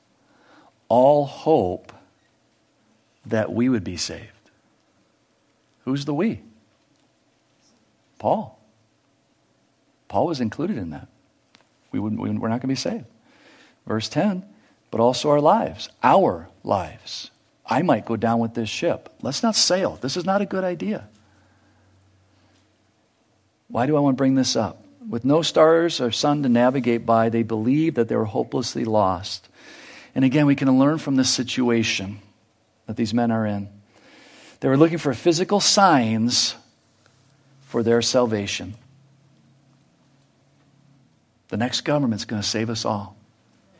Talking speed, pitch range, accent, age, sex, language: 140 wpm, 110-140 Hz, American, 50-69, male, English